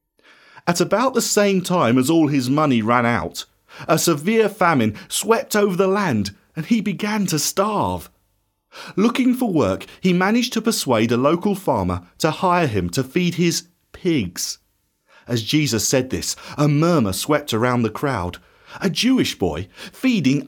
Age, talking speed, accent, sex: 40-59, 160 wpm, British, male